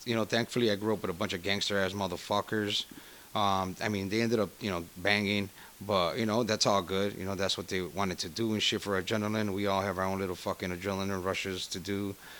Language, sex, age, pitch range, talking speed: English, male, 30-49, 95-110 Hz, 240 wpm